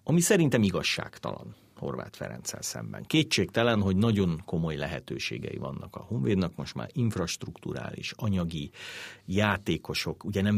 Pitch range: 90-120 Hz